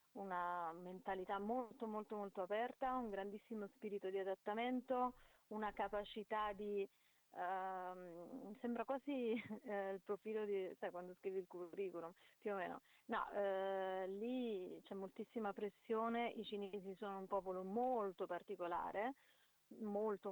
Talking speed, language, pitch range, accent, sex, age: 125 wpm, Italian, 190-230 Hz, native, female, 30-49